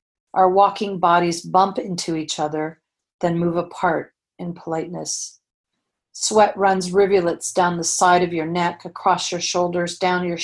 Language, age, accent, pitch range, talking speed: English, 40-59, American, 160-185 Hz, 150 wpm